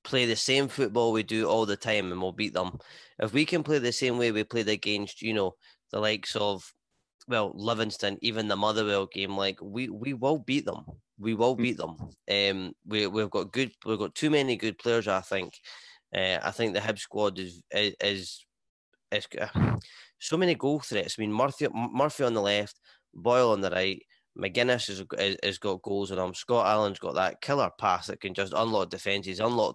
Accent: British